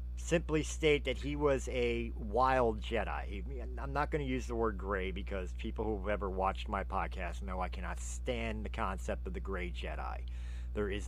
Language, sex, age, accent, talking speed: English, male, 40-59, American, 195 wpm